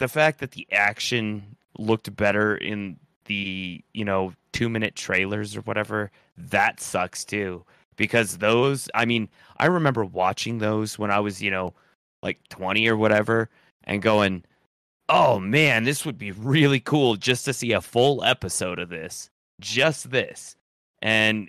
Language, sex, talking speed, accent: English, male, 155 wpm, American